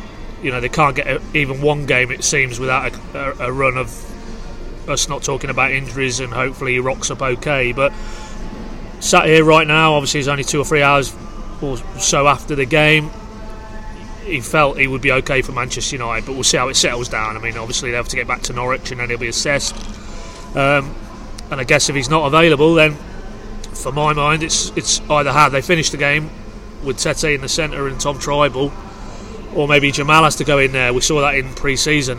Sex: male